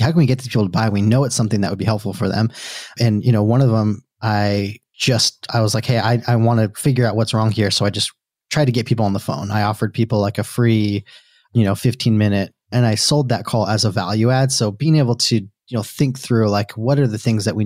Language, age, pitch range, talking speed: English, 30-49, 105-120 Hz, 280 wpm